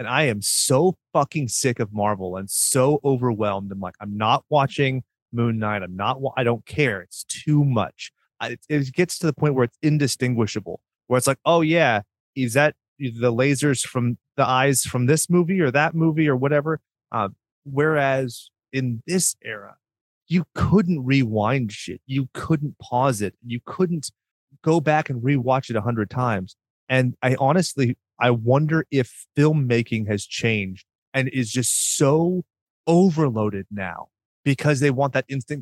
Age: 30-49